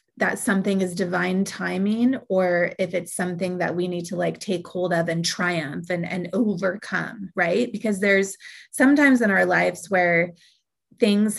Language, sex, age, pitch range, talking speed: English, female, 30-49, 180-210 Hz, 165 wpm